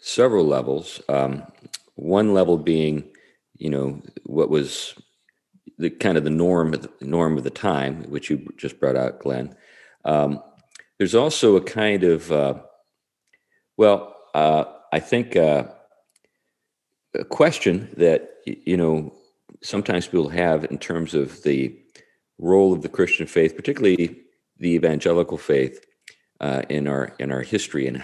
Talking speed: 145 wpm